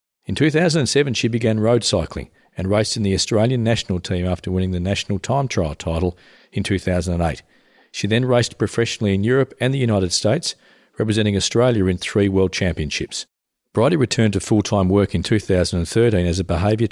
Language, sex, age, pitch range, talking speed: English, male, 50-69, 90-110 Hz, 170 wpm